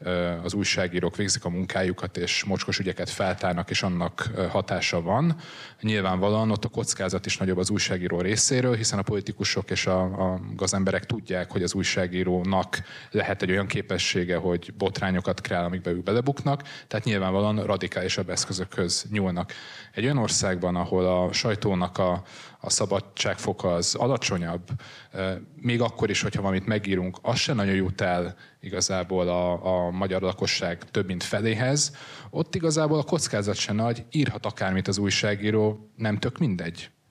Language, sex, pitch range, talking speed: Hungarian, male, 90-110 Hz, 145 wpm